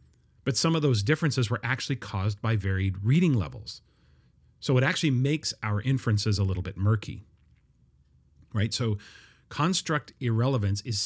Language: English